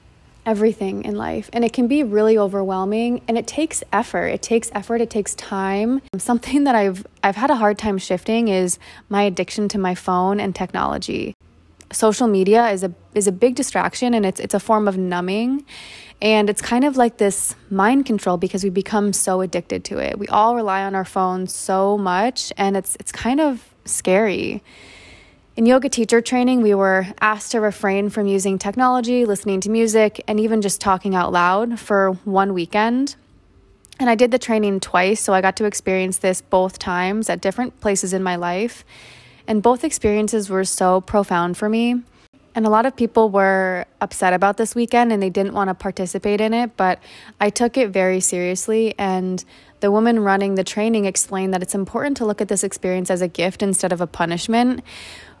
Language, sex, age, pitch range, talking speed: English, female, 20-39, 190-230 Hz, 195 wpm